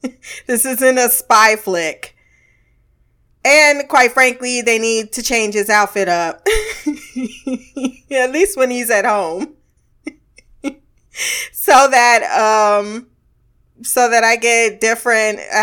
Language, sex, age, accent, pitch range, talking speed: English, female, 20-39, American, 190-250 Hz, 115 wpm